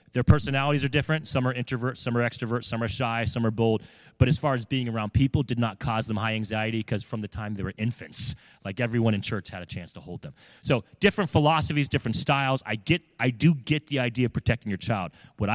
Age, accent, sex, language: 30-49, American, male, English